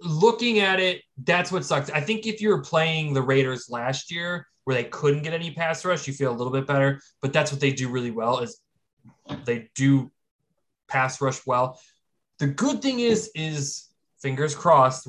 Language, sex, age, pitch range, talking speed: English, male, 20-39, 125-160 Hz, 195 wpm